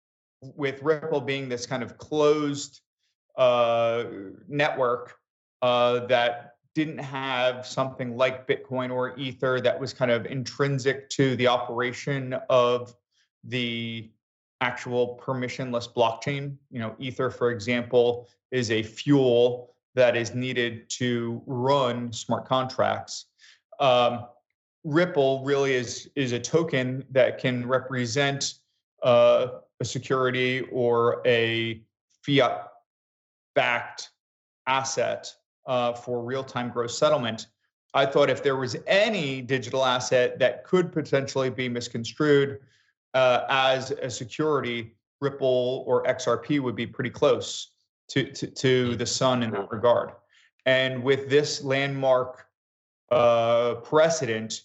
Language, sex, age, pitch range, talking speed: English, male, 30-49, 120-135 Hz, 115 wpm